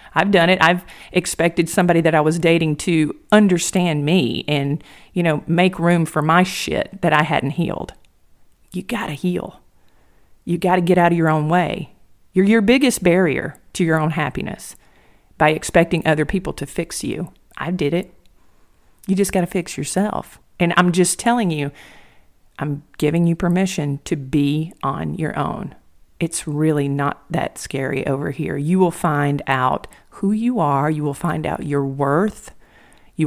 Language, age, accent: English, 40-59, American